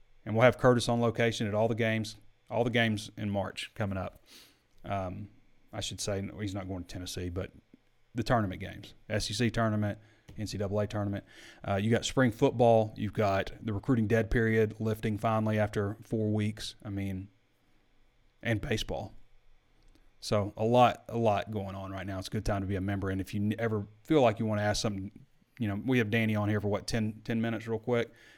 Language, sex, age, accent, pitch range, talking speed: English, male, 30-49, American, 105-125 Hz, 205 wpm